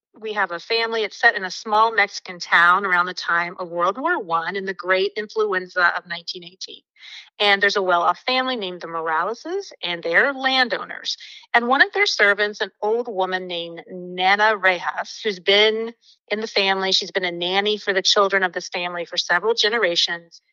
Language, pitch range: English, 180-225 Hz